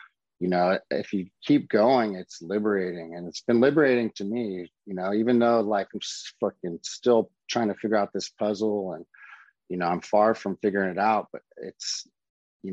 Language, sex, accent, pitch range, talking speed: English, male, American, 95-115 Hz, 190 wpm